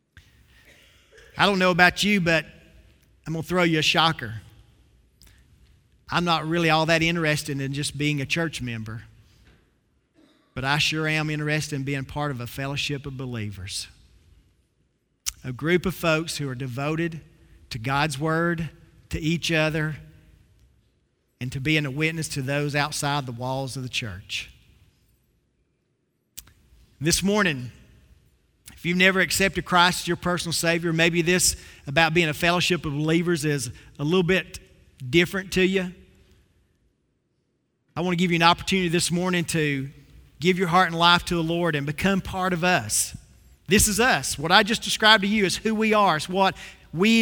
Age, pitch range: 40-59, 135-180 Hz